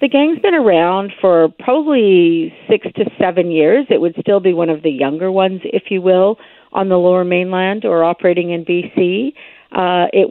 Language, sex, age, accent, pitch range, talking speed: English, female, 50-69, American, 160-185 Hz, 185 wpm